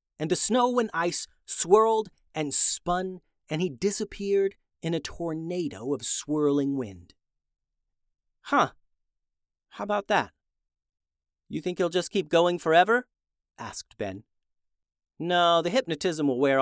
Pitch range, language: 115-170 Hz, English